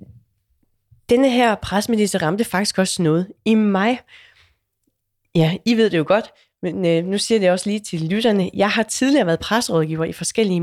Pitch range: 175-215 Hz